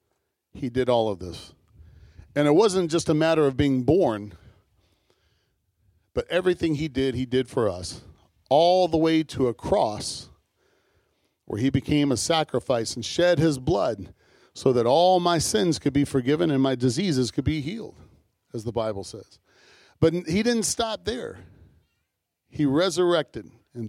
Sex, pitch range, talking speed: male, 115-160 Hz, 160 wpm